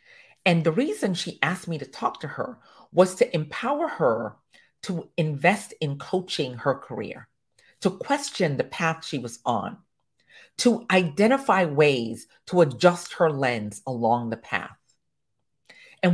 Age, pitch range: 40-59, 140-225 Hz